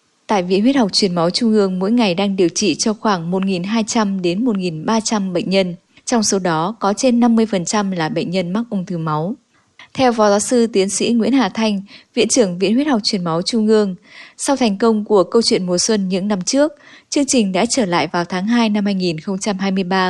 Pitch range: 180-255 Hz